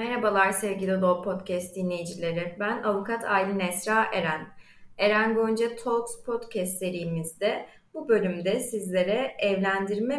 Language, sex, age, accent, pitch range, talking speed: Turkish, female, 30-49, native, 190-250 Hz, 110 wpm